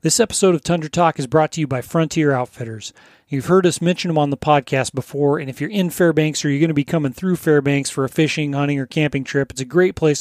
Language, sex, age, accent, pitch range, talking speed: English, male, 30-49, American, 140-160 Hz, 265 wpm